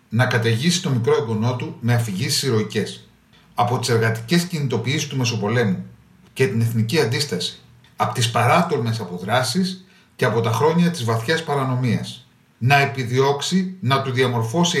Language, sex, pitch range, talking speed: Greek, male, 115-170 Hz, 140 wpm